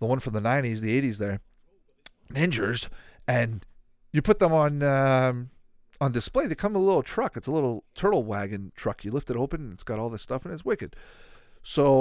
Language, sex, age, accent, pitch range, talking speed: English, male, 30-49, American, 110-165 Hz, 220 wpm